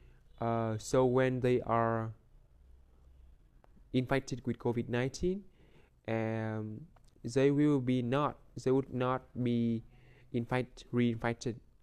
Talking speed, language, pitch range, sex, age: 100 wpm, English, 105-130 Hz, male, 20-39